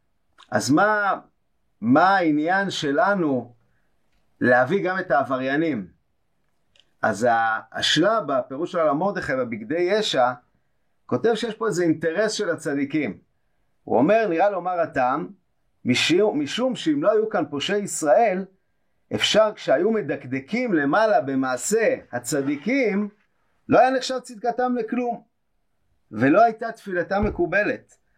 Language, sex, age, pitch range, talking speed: Hebrew, male, 50-69, 150-225 Hz, 110 wpm